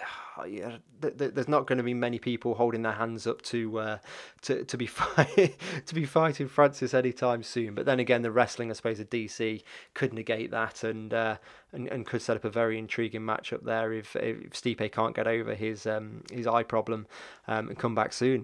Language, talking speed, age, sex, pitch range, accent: English, 210 wpm, 20-39, male, 110-125 Hz, British